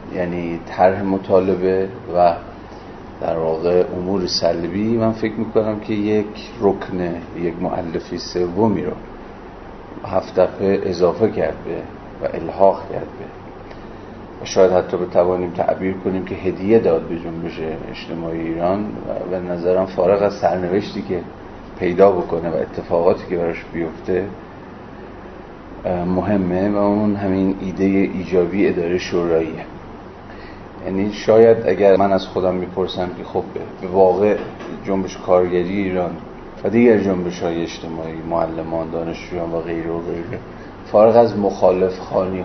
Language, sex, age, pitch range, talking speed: Persian, male, 40-59, 90-100 Hz, 130 wpm